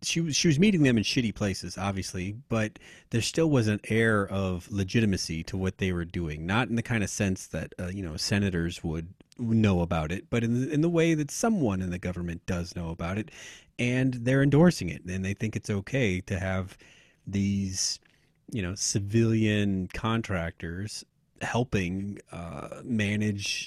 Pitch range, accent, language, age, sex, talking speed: 90-115 Hz, American, English, 30-49, male, 180 wpm